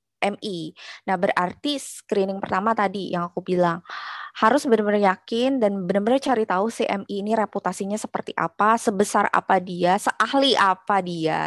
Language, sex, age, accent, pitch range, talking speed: Indonesian, female, 20-39, native, 190-235 Hz, 145 wpm